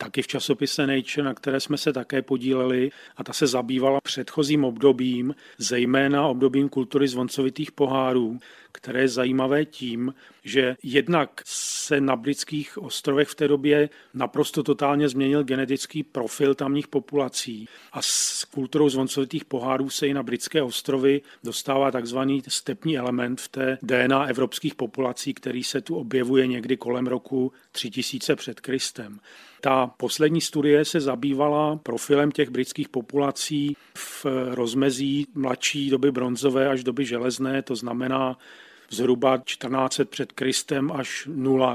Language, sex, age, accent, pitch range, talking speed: Czech, male, 40-59, native, 130-145 Hz, 135 wpm